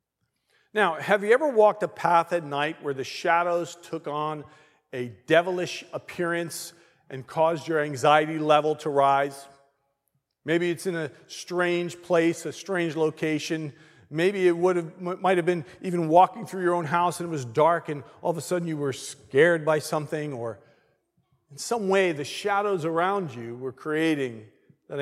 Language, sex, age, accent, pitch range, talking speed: English, male, 40-59, American, 140-180 Hz, 170 wpm